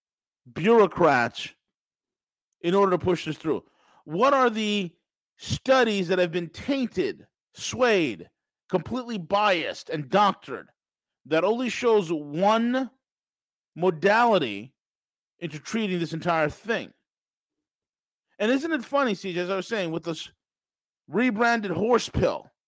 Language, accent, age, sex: English, American, 40-59, male